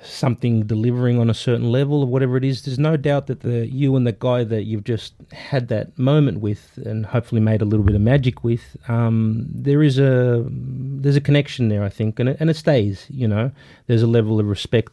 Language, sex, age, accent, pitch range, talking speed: English, male, 30-49, Australian, 110-130 Hz, 230 wpm